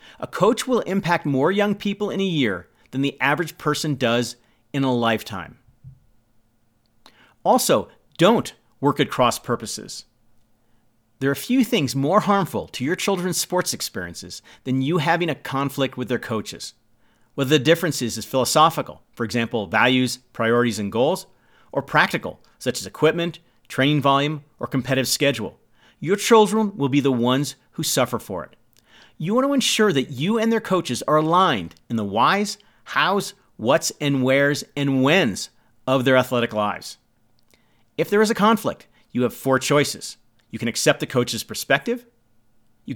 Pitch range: 115-155 Hz